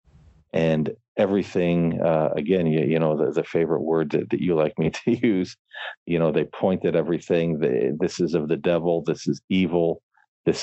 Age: 40-59